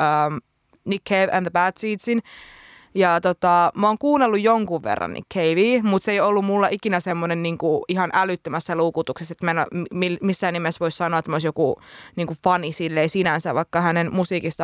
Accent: native